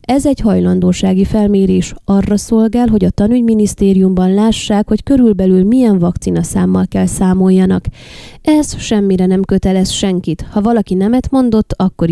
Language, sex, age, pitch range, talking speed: Hungarian, female, 20-39, 180-205 Hz, 135 wpm